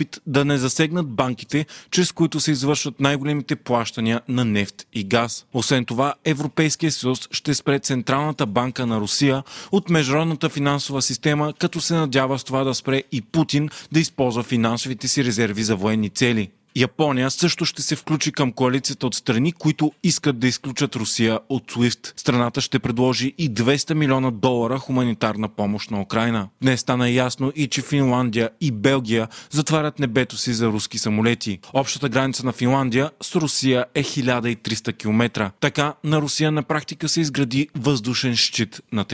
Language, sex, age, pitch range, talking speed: Bulgarian, male, 30-49, 120-150 Hz, 160 wpm